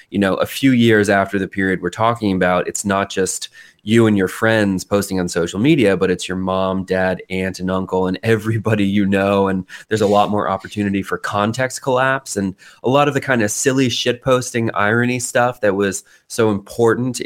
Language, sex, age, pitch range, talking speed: English, male, 20-39, 95-115 Hz, 210 wpm